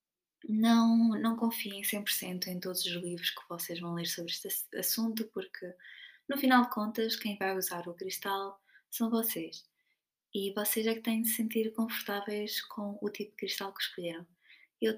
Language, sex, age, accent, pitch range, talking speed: Portuguese, female, 20-39, Brazilian, 185-230 Hz, 170 wpm